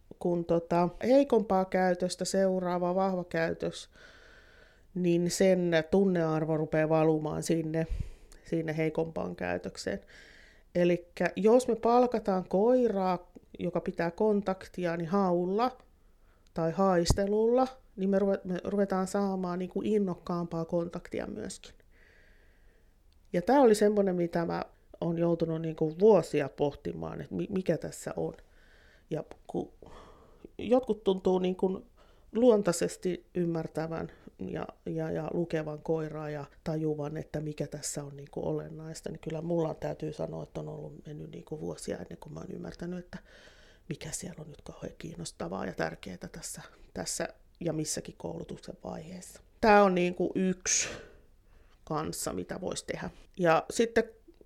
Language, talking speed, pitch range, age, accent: Finnish, 120 wpm, 160-195 Hz, 30-49, native